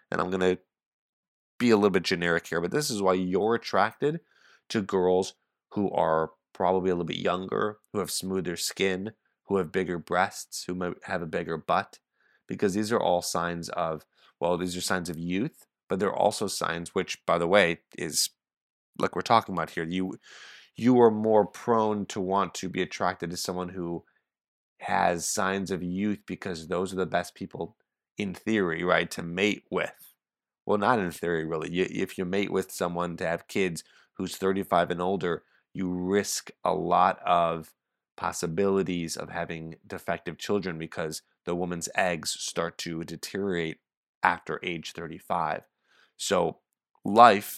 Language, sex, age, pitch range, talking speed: English, male, 20-39, 85-95 Hz, 170 wpm